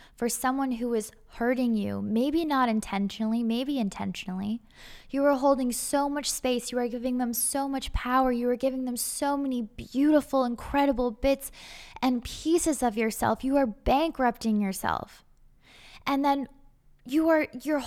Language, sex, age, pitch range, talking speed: English, female, 10-29, 235-295 Hz, 150 wpm